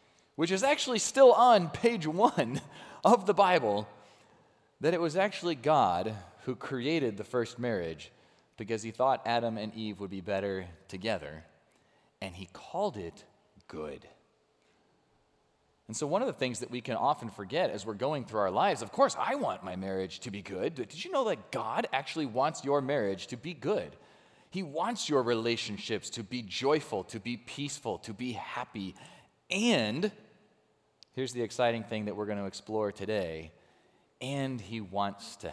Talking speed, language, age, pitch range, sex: 170 wpm, English, 30-49, 105-155 Hz, male